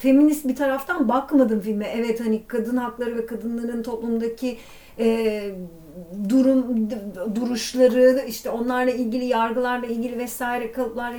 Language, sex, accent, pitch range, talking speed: Turkish, female, native, 220-265 Hz, 115 wpm